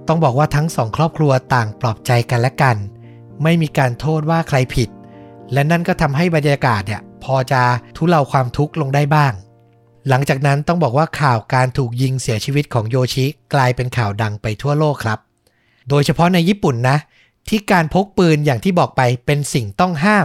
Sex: male